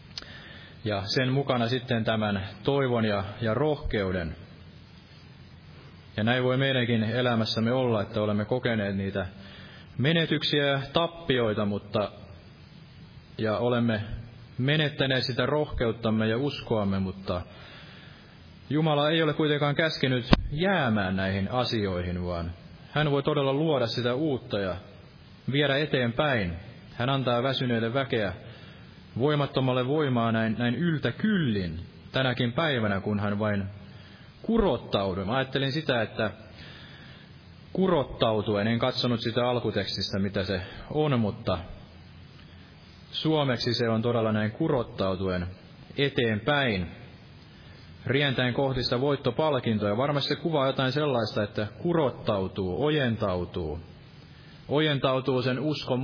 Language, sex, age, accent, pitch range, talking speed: Finnish, male, 30-49, native, 100-140 Hz, 105 wpm